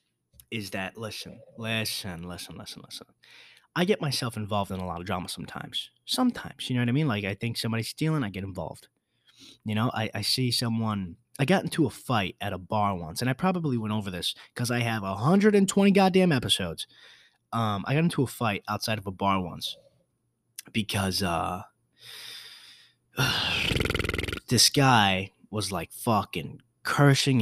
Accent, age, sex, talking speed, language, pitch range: American, 20-39, male, 170 wpm, English, 100-135 Hz